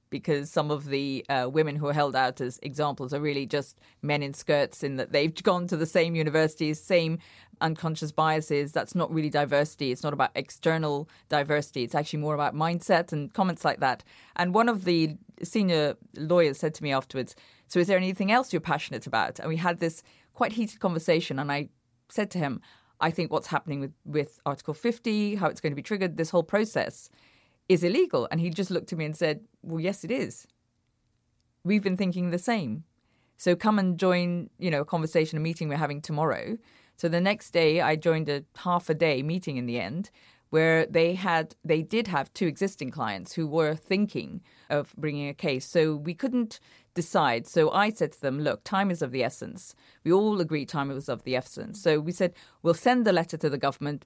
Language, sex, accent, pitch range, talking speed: English, female, British, 145-180 Hz, 210 wpm